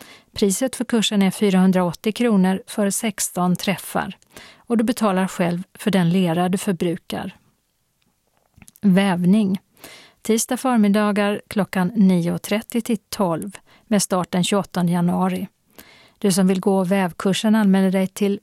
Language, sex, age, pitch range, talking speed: Swedish, female, 40-59, 180-215 Hz, 125 wpm